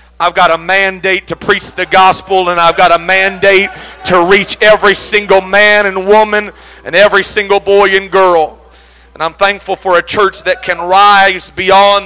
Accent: American